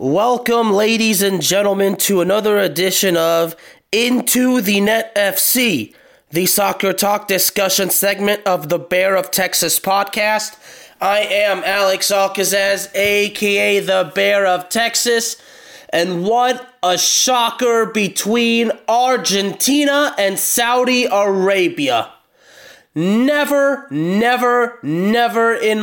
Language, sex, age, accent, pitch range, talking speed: English, male, 20-39, American, 195-245 Hz, 105 wpm